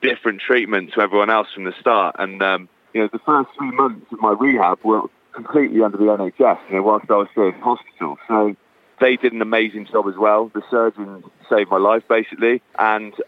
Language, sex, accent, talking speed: English, male, British, 215 wpm